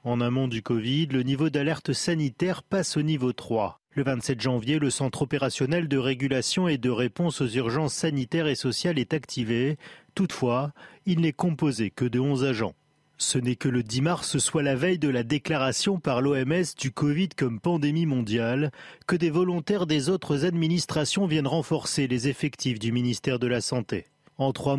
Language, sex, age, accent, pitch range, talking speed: French, male, 40-59, French, 130-170 Hz, 180 wpm